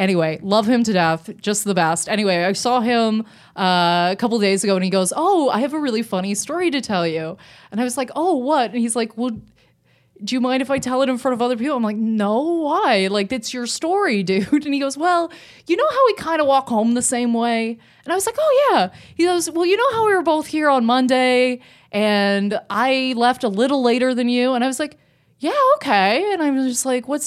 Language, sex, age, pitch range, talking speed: English, female, 20-39, 210-300 Hz, 255 wpm